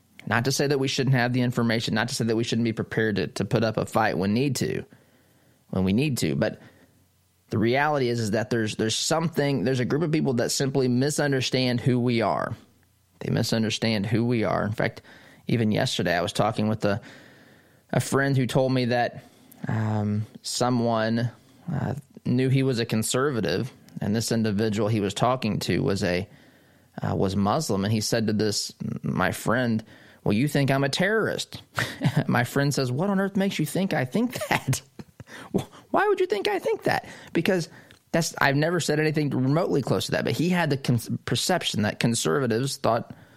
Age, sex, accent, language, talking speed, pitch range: 20-39, male, American, English, 195 wpm, 110-140 Hz